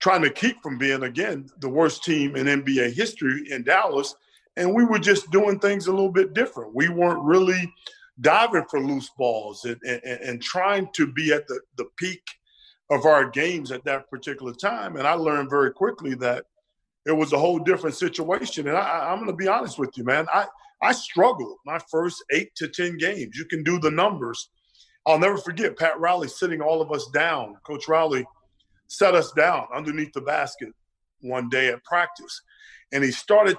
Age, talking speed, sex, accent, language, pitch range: 40-59, 195 wpm, male, American, English, 135-180 Hz